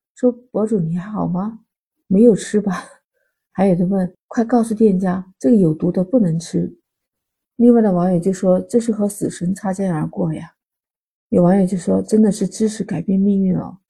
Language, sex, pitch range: Chinese, female, 175-215 Hz